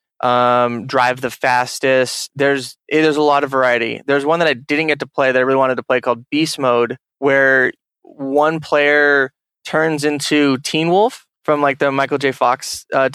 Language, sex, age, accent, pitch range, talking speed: English, male, 20-39, American, 125-150 Hz, 190 wpm